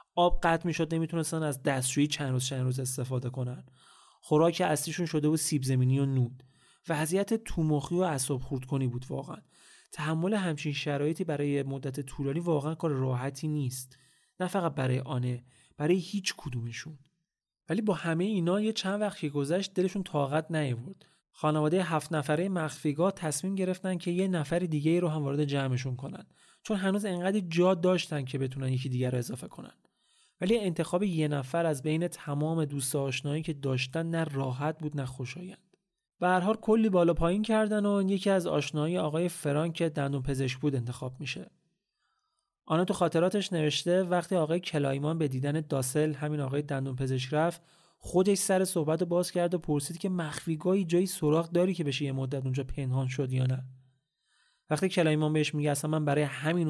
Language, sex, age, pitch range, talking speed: Persian, male, 30-49, 140-175 Hz, 165 wpm